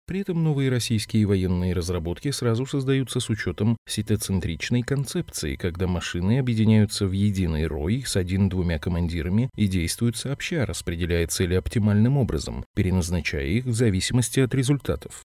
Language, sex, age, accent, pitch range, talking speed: Russian, male, 30-49, native, 90-125 Hz, 135 wpm